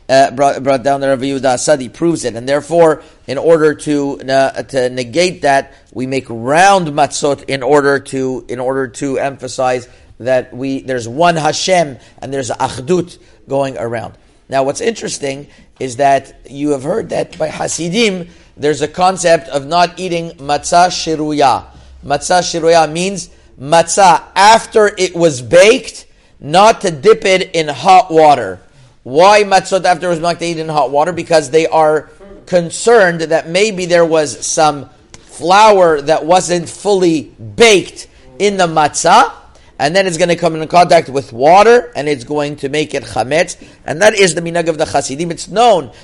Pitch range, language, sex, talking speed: 135-175 Hz, English, male, 165 wpm